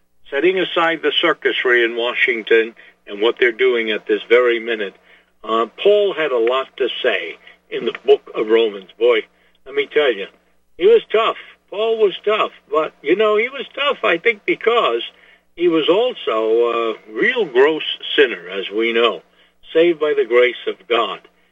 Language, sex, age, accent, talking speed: English, male, 60-79, American, 175 wpm